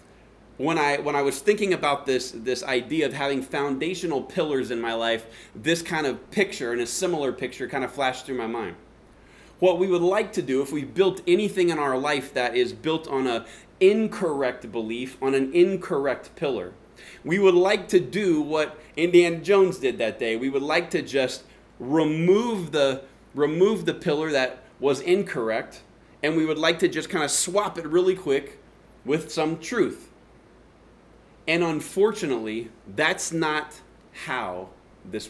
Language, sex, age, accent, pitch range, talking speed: English, male, 20-39, American, 125-170 Hz, 170 wpm